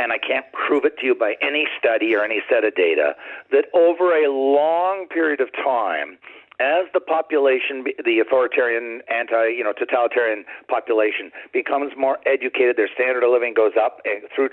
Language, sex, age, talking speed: English, male, 50-69, 175 wpm